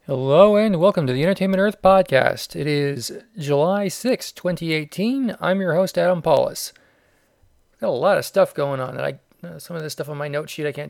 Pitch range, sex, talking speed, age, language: 145-195 Hz, male, 205 wpm, 40-59, English